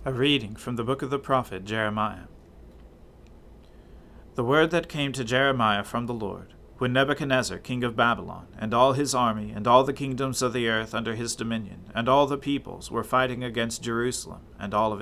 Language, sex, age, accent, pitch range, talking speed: English, male, 40-59, American, 100-135 Hz, 190 wpm